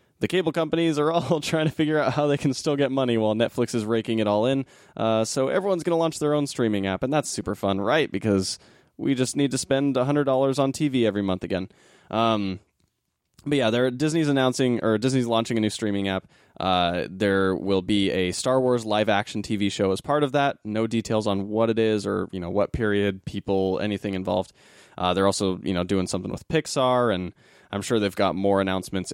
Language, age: English, 20-39